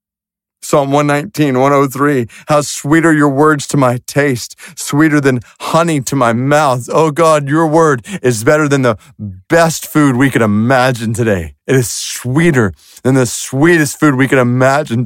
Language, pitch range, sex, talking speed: English, 130-160 Hz, male, 160 wpm